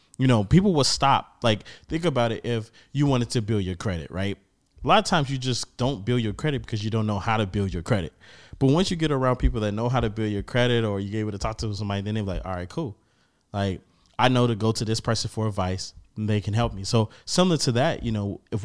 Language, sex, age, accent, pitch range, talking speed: English, male, 20-39, American, 100-120 Hz, 270 wpm